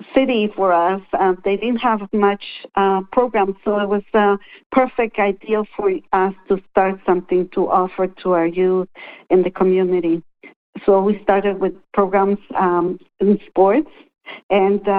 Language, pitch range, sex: English, 185-210 Hz, female